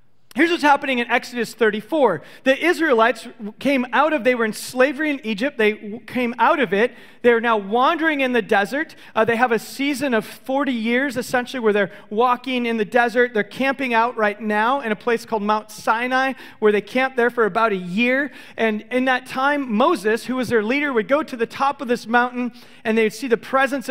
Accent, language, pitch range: American, English, 220-275 Hz